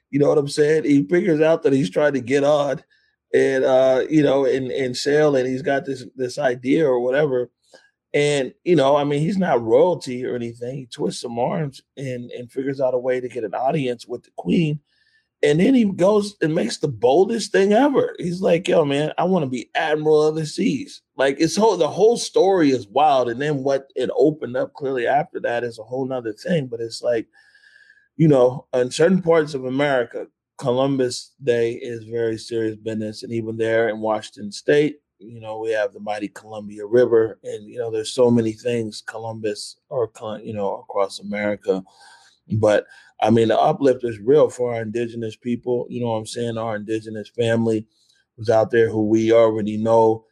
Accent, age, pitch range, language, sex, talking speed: American, 30-49, 115-160 Hz, English, male, 200 wpm